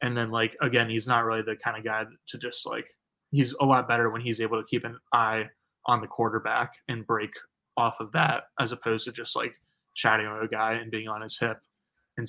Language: English